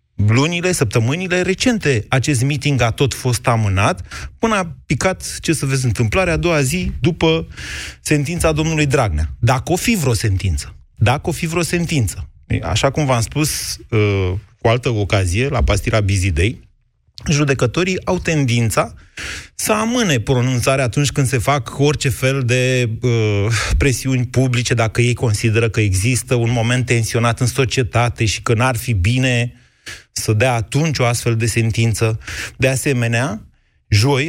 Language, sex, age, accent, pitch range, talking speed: Romanian, male, 30-49, native, 115-155 Hz, 145 wpm